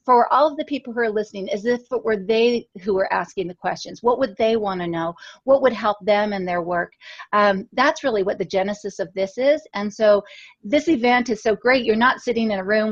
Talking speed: 245 wpm